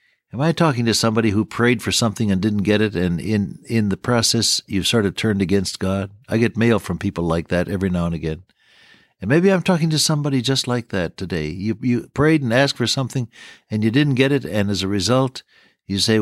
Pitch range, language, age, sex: 95-125 Hz, English, 60-79, male